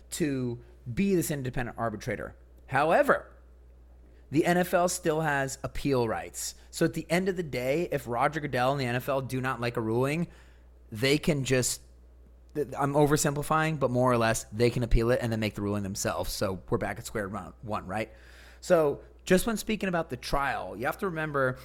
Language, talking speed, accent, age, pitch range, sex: English, 185 wpm, American, 30-49, 105-150 Hz, male